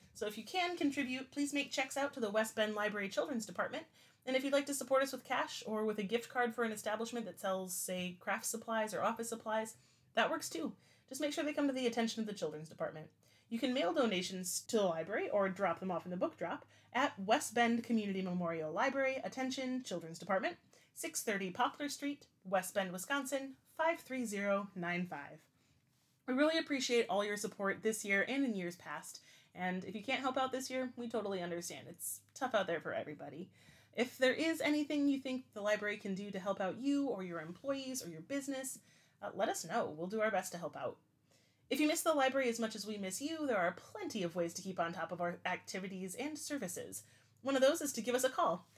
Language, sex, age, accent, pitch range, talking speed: English, female, 30-49, American, 190-270 Hz, 225 wpm